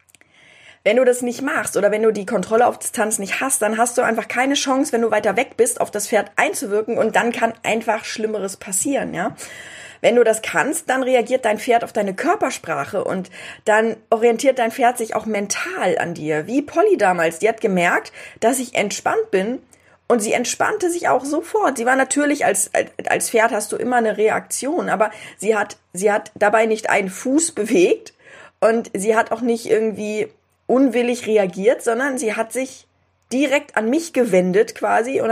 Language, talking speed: German, 190 wpm